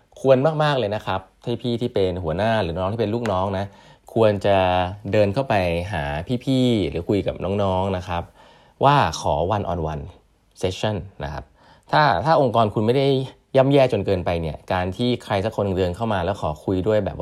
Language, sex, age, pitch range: Thai, male, 20-39, 80-110 Hz